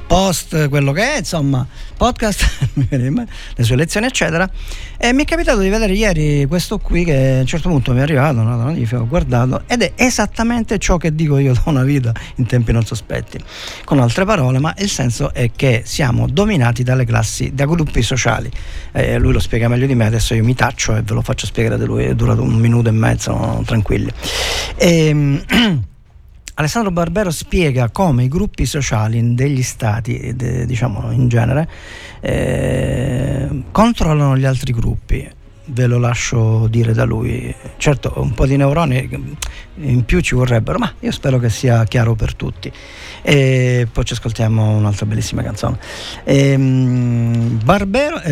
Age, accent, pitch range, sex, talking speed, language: 40-59, native, 120-160 Hz, male, 170 wpm, Italian